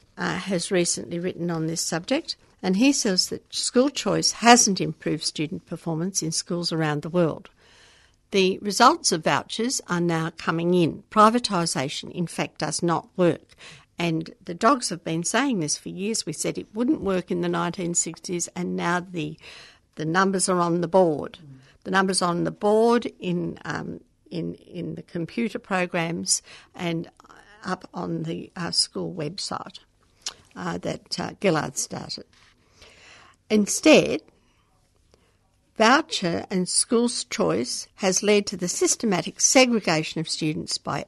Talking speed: 145 wpm